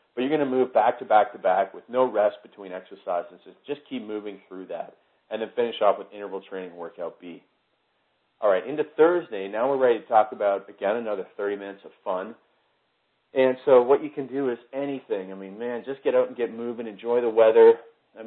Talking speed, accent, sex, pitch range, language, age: 215 wpm, American, male, 100-140 Hz, English, 40-59